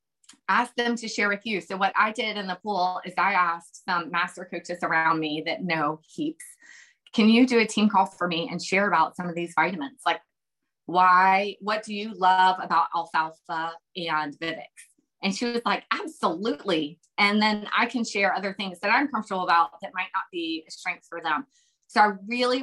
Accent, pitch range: American, 170-210 Hz